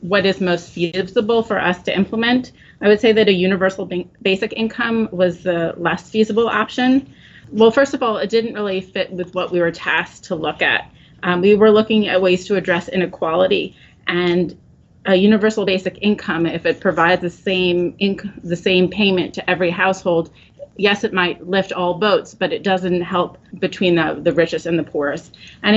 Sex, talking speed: female, 190 wpm